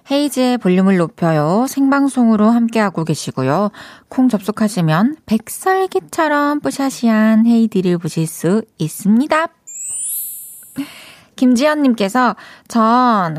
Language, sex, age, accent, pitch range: Korean, female, 20-39, native, 175-245 Hz